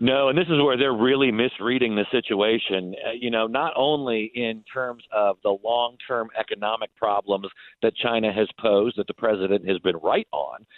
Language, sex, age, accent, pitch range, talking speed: English, male, 50-69, American, 115-150 Hz, 185 wpm